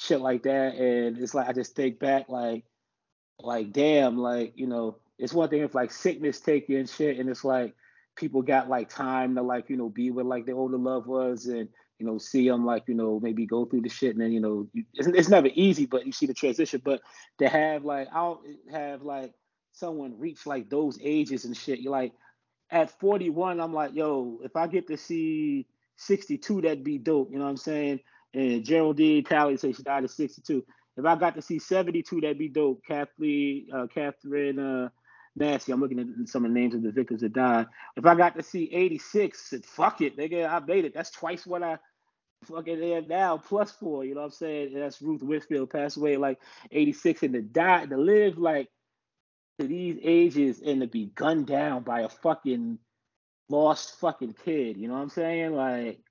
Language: English